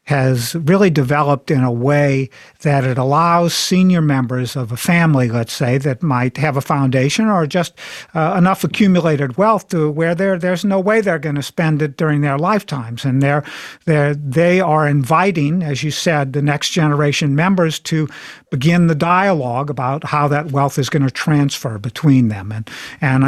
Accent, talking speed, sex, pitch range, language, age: American, 180 wpm, male, 130-170 Hz, English, 50-69